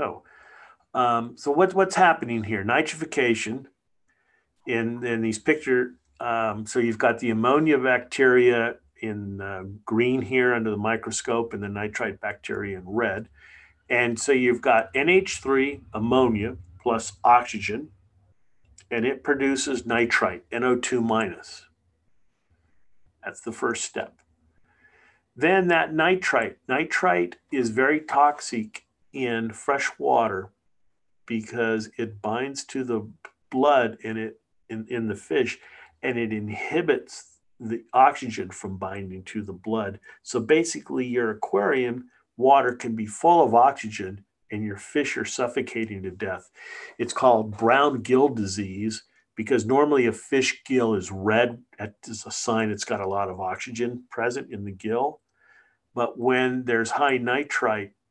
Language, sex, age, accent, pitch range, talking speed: English, male, 50-69, American, 105-125 Hz, 130 wpm